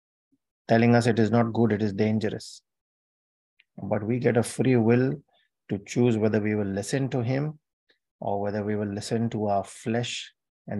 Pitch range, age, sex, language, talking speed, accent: 105-120 Hz, 30-49, male, English, 180 wpm, Indian